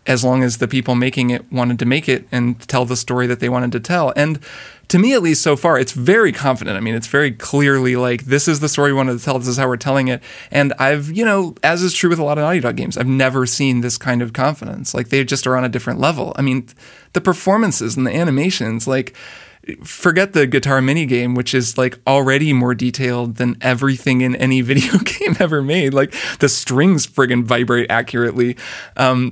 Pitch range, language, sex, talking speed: 125-150 Hz, English, male, 230 wpm